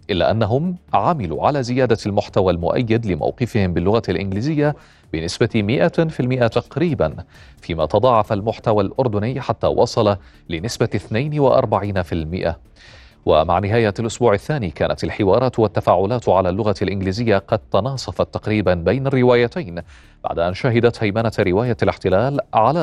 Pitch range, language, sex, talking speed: 95-125 Hz, Arabic, male, 115 wpm